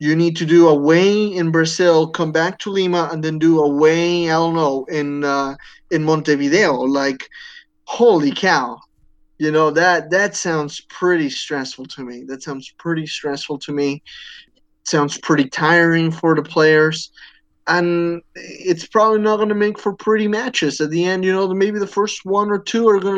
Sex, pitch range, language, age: male, 160-190 Hz, English, 20-39